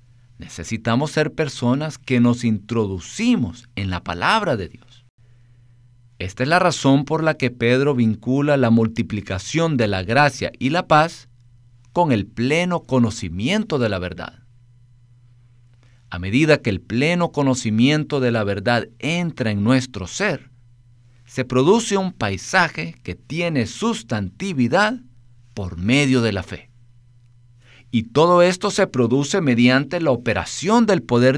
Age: 50-69